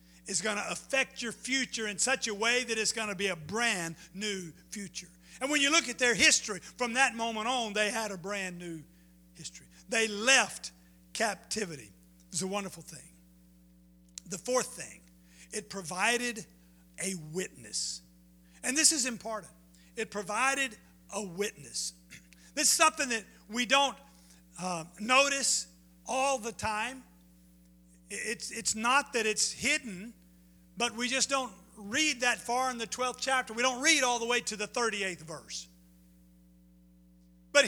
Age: 50-69